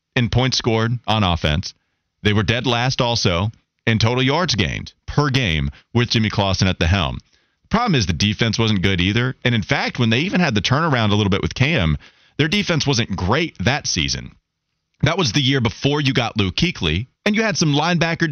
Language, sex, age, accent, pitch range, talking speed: English, male, 30-49, American, 100-140 Hz, 210 wpm